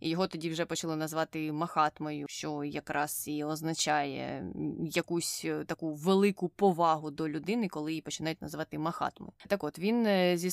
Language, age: Ukrainian, 20-39